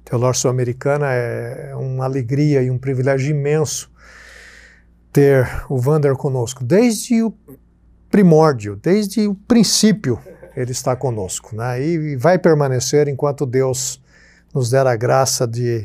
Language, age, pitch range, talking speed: Portuguese, 60-79, 125-185 Hz, 125 wpm